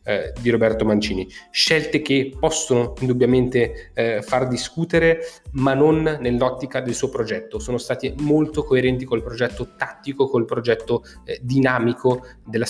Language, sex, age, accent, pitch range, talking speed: Italian, male, 20-39, native, 115-140 Hz, 130 wpm